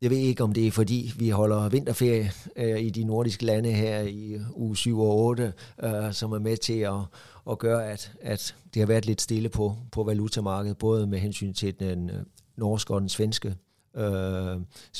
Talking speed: 190 wpm